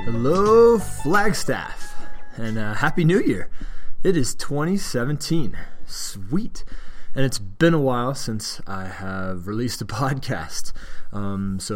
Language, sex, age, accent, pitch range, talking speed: English, male, 20-39, American, 105-130 Hz, 125 wpm